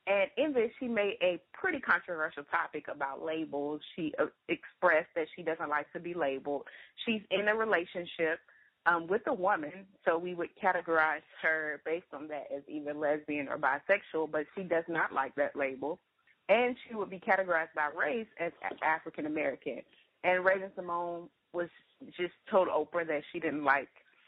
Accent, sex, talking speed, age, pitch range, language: American, female, 170 wpm, 30-49, 155-190 Hz, English